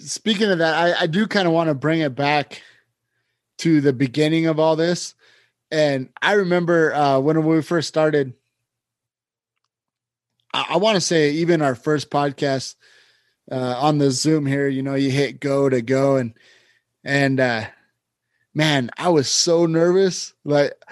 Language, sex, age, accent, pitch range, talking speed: English, male, 20-39, American, 135-170 Hz, 165 wpm